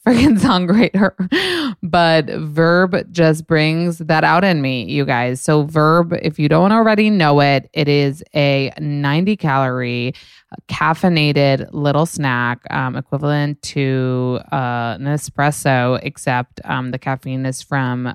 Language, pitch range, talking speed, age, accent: English, 130-175 Hz, 130 wpm, 20-39, American